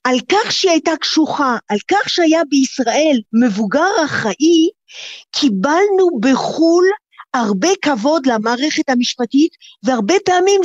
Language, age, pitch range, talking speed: Hebrew, 50-69, 230-355 Hz, 105 wpm